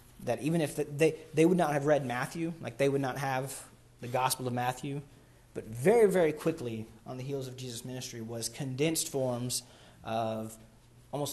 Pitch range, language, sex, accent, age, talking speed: 120-140 Hz, English, male, American, 30-49, 180 wpm